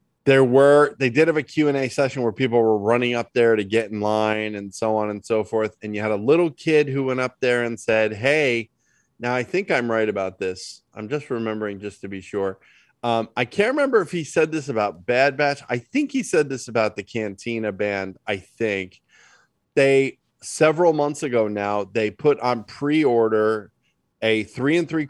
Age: 30-49